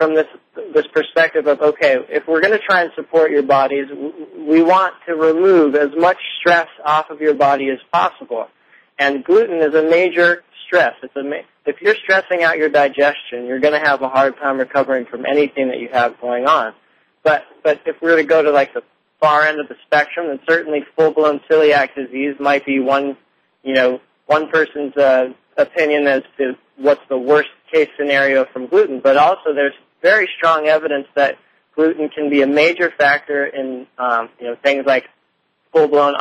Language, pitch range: English, 140-160 Hz